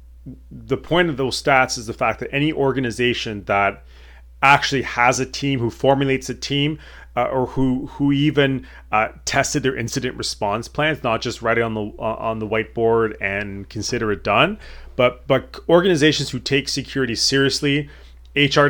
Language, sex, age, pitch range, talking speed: English, male, 30-49, 105-135 Hz, 170 wpm